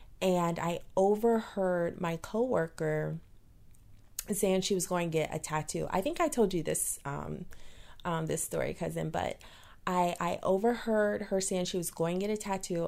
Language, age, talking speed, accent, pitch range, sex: English, 30-49, 170 wpm, American, 165-210 Hz, female